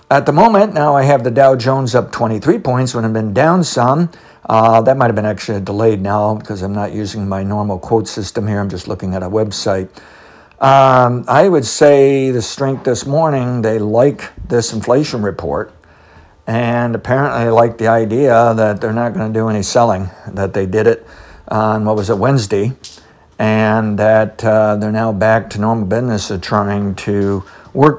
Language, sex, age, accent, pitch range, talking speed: English, male, 60-79, American, 105-125 Hz, 190 wpm